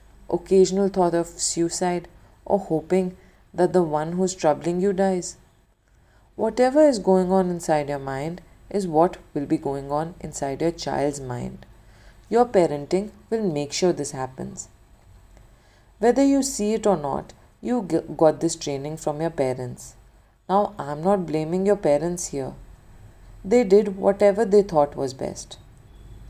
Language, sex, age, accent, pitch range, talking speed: Hindi, female, 40-59, native, 135-190 Hz, 150 wpm